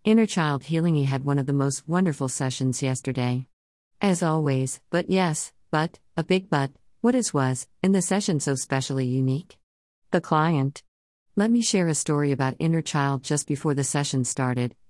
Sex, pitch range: female, 130-160 Hz